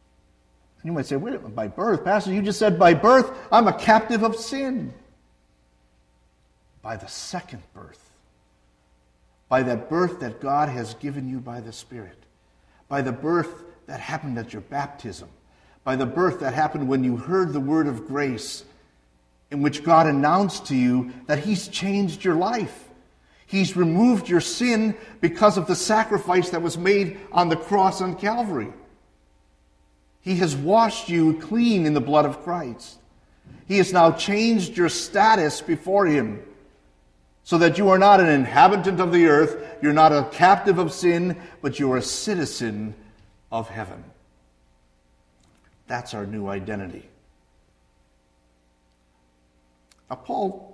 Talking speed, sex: 145 wpm, male